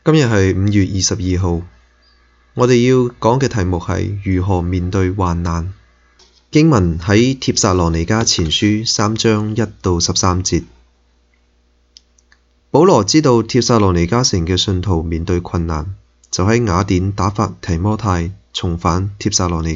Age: 20-39